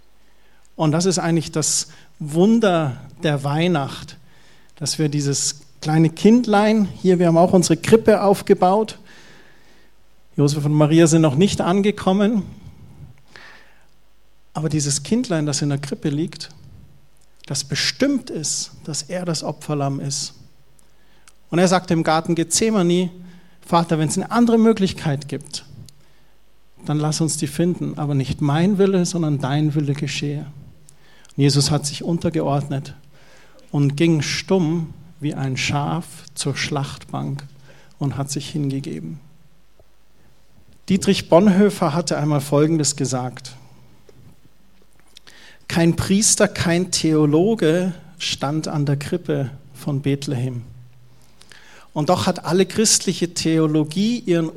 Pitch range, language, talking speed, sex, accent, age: 145-180 Hz, German, 120 wpm, male, German, 40-59